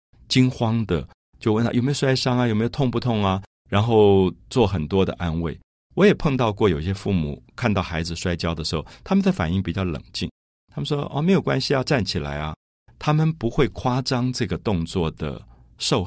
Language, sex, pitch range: Chinese, male, 85-130 Hz